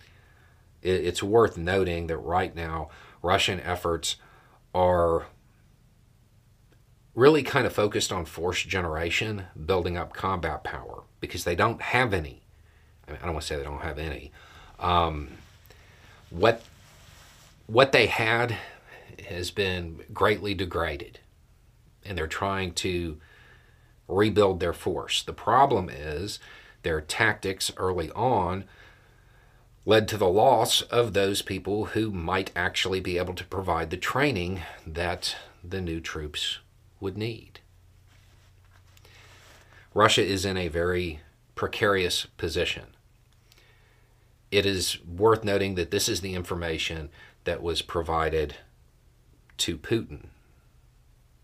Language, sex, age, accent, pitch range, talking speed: English, male, 40-59, American, 85-105 Hz, 115 wpm